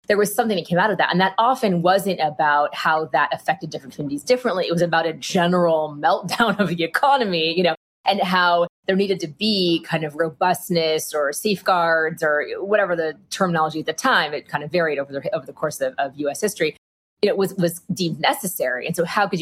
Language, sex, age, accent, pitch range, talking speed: English, female, 20-39, American, 160-195 Hz, 215 wpm